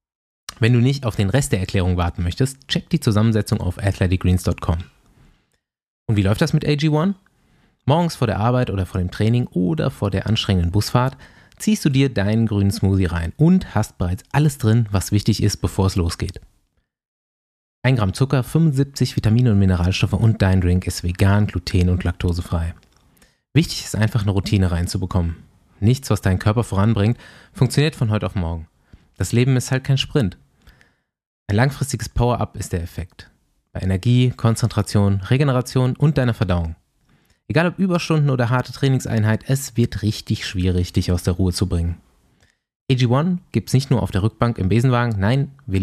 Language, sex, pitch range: German, male, 95-125 Hz